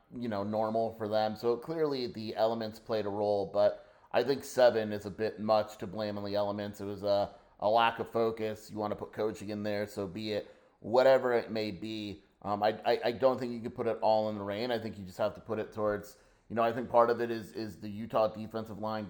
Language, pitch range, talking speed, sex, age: English, 100-110 Hz, 260 wpm, male, 30-49